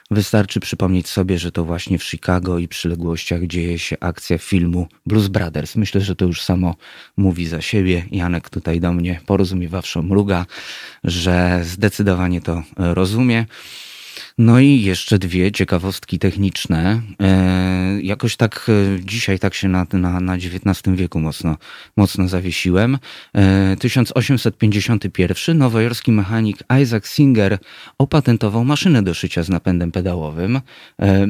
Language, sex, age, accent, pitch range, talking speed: Polish, male, 30-49, native, 90-105 Hz, 130 wpm